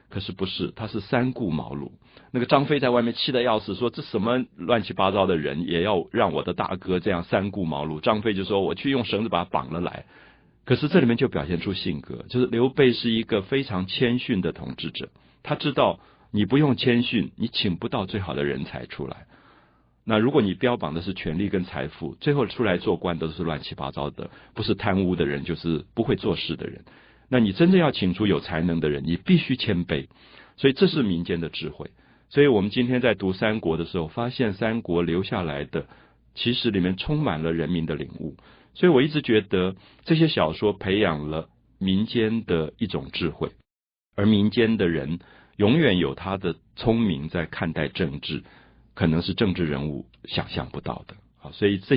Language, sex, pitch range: Chinese, male, 85-120 Hz